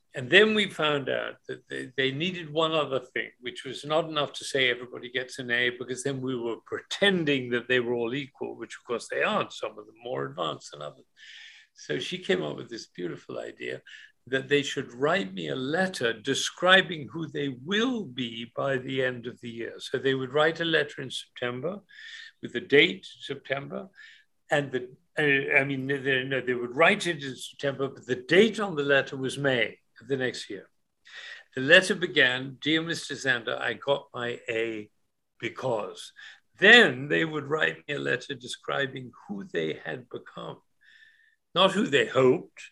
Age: 60-79